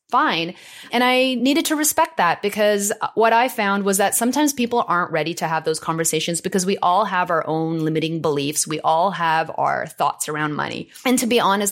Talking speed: 205 wpm